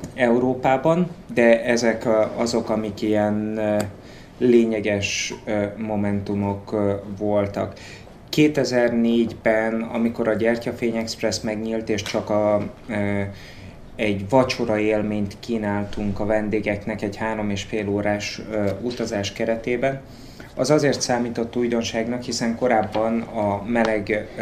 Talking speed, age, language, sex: 95 wpm, 20-39, Hungarian, male